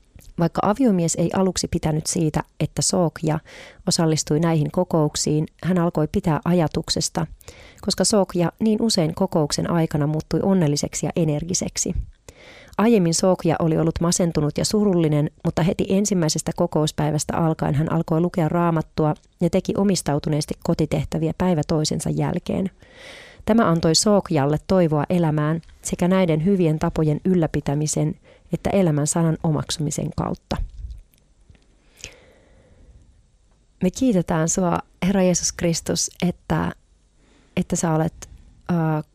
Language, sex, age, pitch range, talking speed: Finnish, female, 30-49, 155-185 Hz, 115 wpm